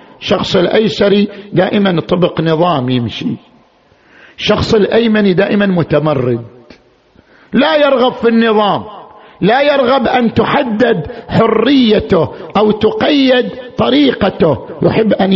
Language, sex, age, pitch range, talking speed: Arabic, male, 50-69, 155-220 Hz, 95 wpm